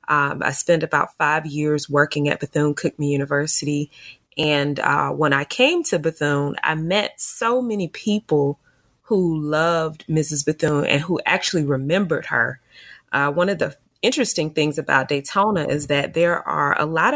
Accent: American